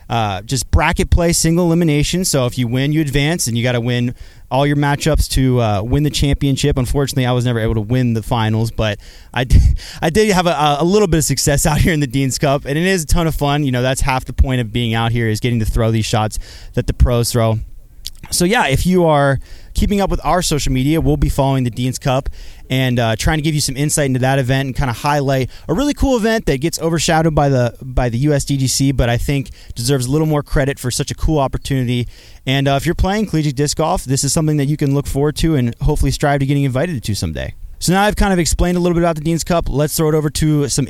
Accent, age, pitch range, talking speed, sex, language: American, 20-39, 115-150 Hz, 265 wpm, male, English